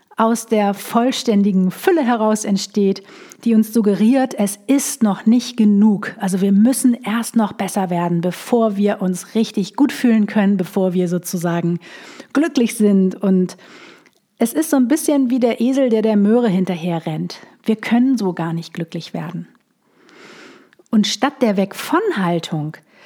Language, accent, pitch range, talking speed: German, German, 190-250 Hz, 150 wpm